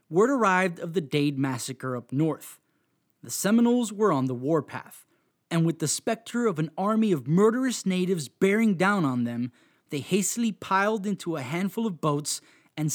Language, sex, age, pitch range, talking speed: English, male, 20-39, 145-215 Hz, 170 wpm